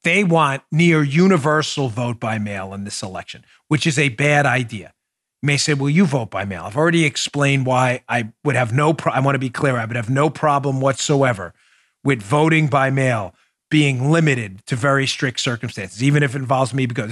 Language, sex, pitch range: English, male, 130-175 Hz